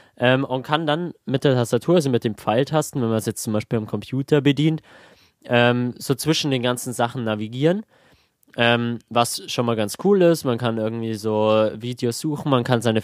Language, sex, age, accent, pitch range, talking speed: German, male, 20-39, German, 115-140 Hz, 195 wpm